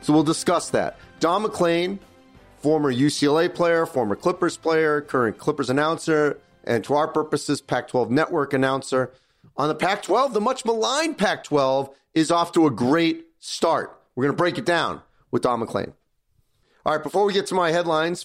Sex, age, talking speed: male, 40-59, 170 wpm